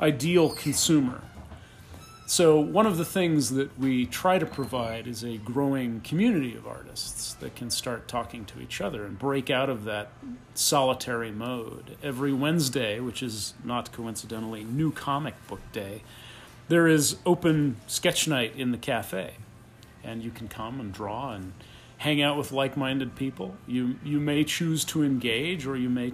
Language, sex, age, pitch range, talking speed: English, male, 40-59, 115-145 Hz, 165 wpm